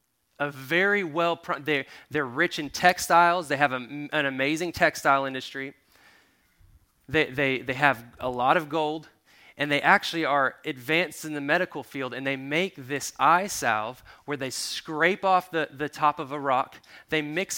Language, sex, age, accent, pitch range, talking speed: English, male, 20-39, American, 135-170 Hz, 170 wpm